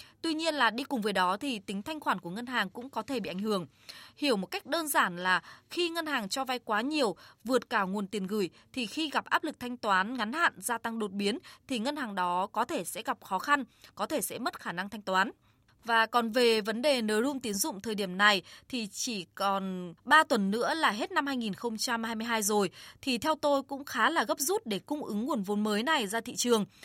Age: 20-39